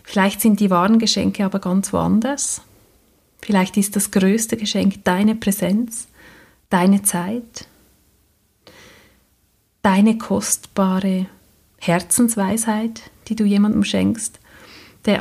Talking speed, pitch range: 100 wpm, 185-220 Hz